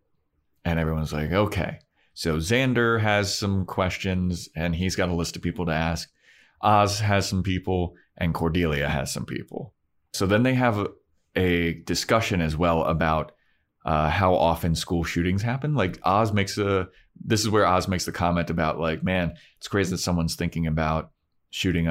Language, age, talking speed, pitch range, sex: English, 30-49, 175 wpm, 80-95 Hz, male